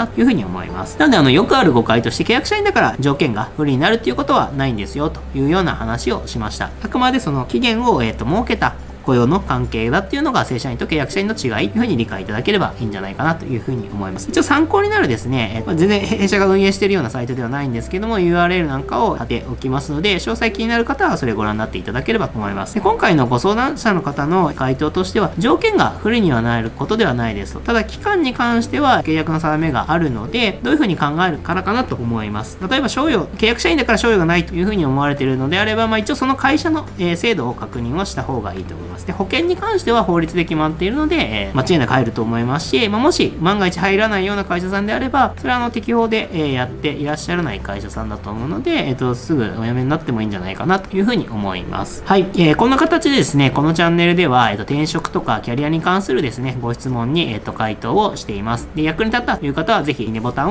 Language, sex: Japanese, male